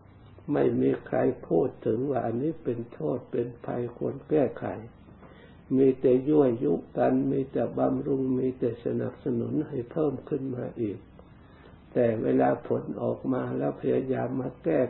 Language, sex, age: Thai, male, 60-79